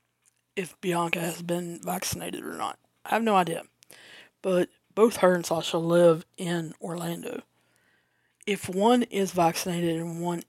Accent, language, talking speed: American, English, 145 wpm